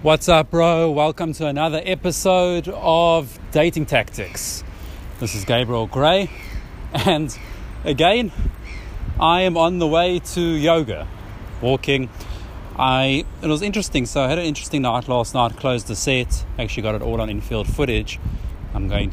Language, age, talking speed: Spanish, 30-49, 150 wpm